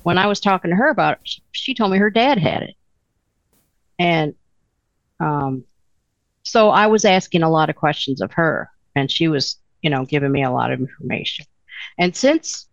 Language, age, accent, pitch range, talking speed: English, 50-69, American, 150-200 Hz, 190 wpm